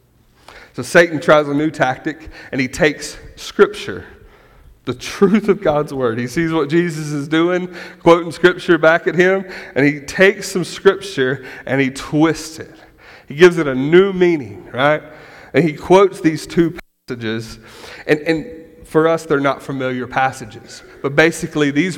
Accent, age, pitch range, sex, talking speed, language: American, 30-49, 135-170 Hz, male, 160 wpm, English